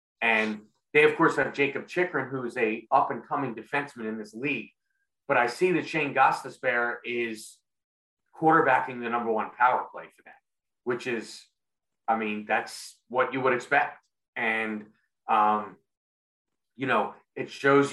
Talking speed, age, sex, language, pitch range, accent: 150 wpm, 30-49, male, English, 110-140 Hz, American